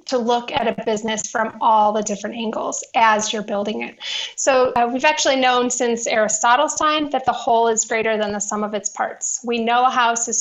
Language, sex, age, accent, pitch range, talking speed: English, female, 30-49, American, 220-265 Hz, 220 wpm